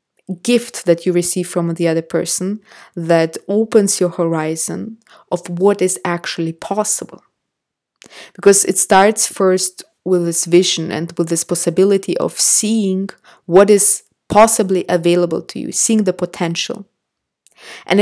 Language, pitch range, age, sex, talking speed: English, 170-195 Hz, 20-39, female, 135 wpm